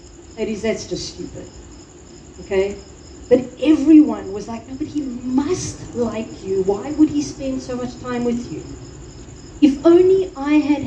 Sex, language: female, English